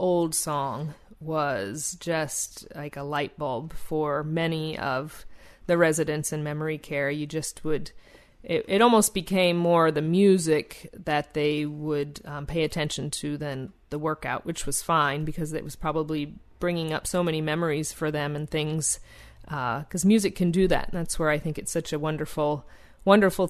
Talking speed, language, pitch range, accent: 175 wpm, English, 150-175 Hz, American